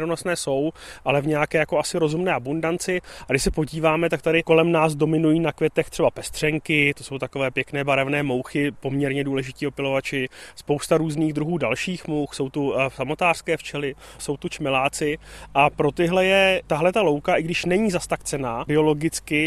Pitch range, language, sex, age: 145-175 Hz, Czech, male, 30-49